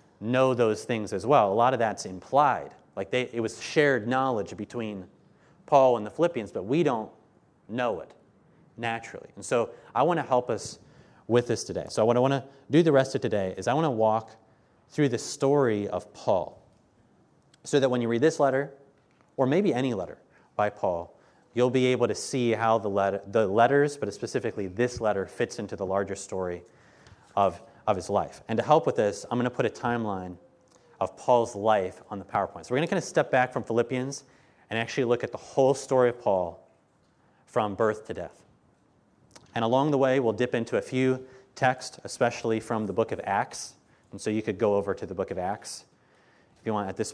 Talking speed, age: 210 wpm, 30-49